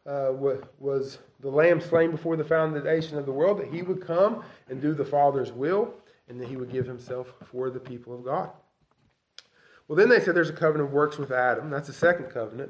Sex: male